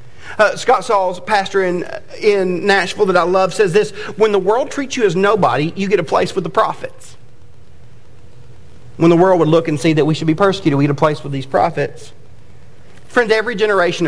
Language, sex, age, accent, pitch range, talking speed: English, male, 40-59, American, 125-185 Hz, 205 wpm